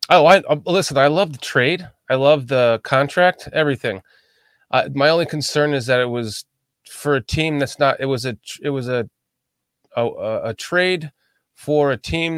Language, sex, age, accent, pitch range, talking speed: English, male, 20-39, American, 120-155 Hz, 185 wpm